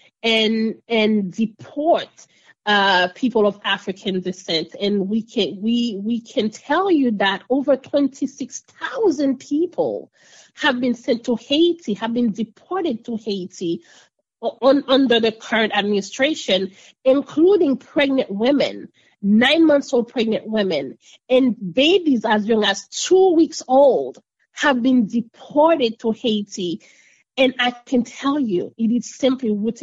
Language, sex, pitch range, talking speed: English, female, 205-270 Hz, 135 wpm